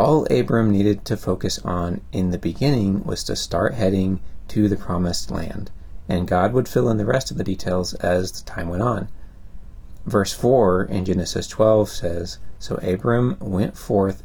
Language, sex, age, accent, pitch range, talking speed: English, male, 30-49, American, 85-100 Hz, 175 wpm